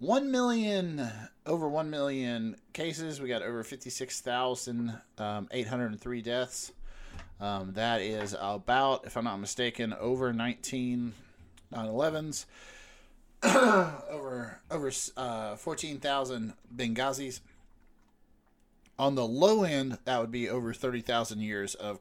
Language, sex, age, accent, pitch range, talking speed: English, male, 30-49, American, 105-130 Hz, 110 wpm